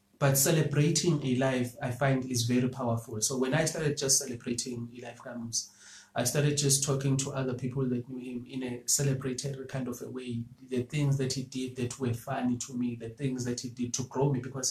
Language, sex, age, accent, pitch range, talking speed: English, male, 30-49, South African, 120-140 Hz, 215 wpm